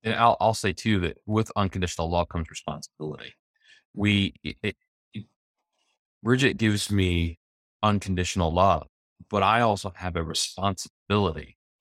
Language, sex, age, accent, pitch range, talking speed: English, male, 20-39, American, 80-95 Hz, 125 wpm